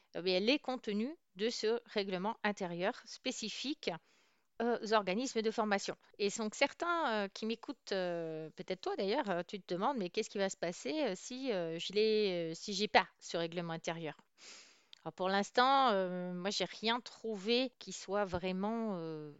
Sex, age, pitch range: female, 40-59, 185-235 Hz